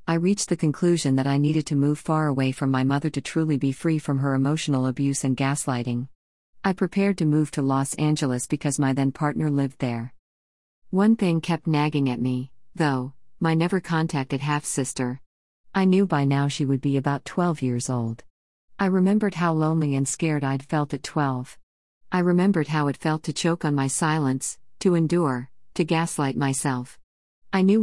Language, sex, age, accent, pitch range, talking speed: English, female, 50-69, American, 135-170 Hz, 190 wpm